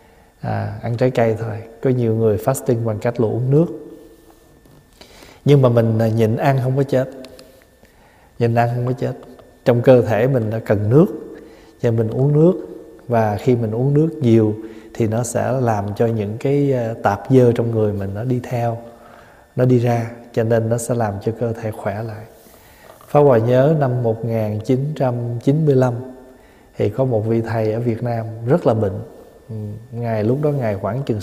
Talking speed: 180 wpm